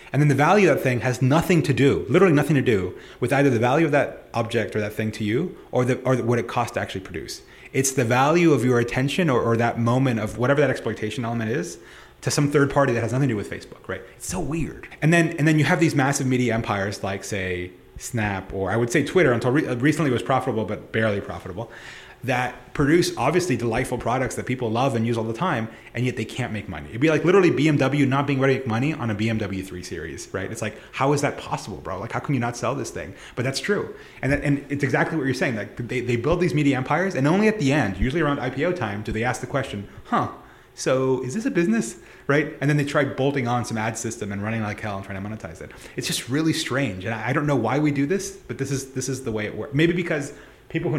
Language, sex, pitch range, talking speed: English, male, 115-145 Hz, 270 wpm